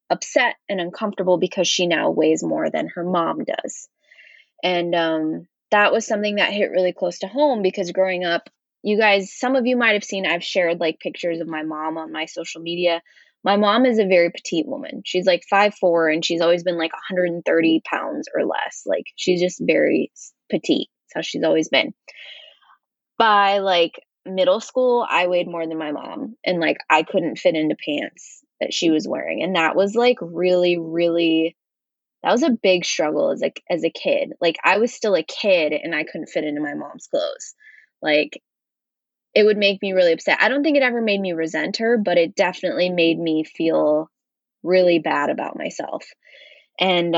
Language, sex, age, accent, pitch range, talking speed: English, female, 20-39, American, 170-225 Hz, 190 wpm